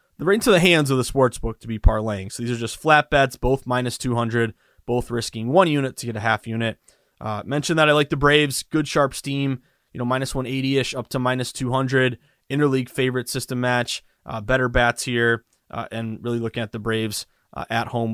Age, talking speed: 20-39, 215 wpm